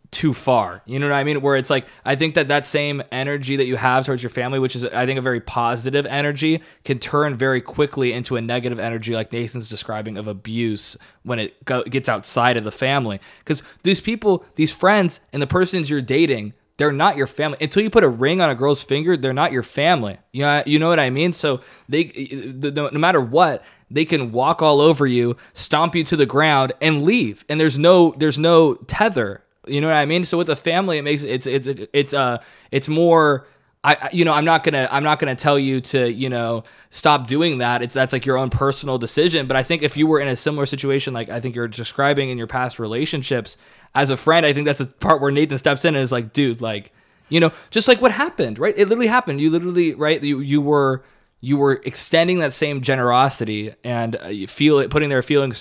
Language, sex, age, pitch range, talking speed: English, male, 20-39, 125-155 Hz, 240 wpm